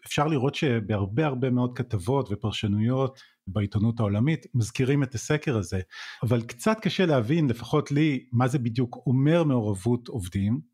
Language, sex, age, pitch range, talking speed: Hebrew, male, 40-59, 115-150 Hz, 140 wpm